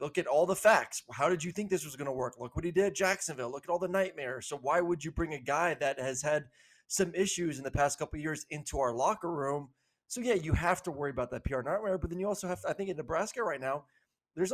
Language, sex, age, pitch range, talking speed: English, male, 20-39, 130-165 Hz, 290 wpm